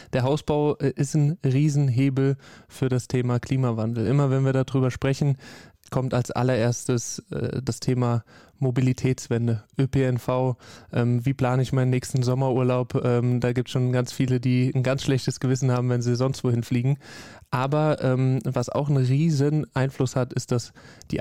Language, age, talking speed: German, 20-39, 160 wpm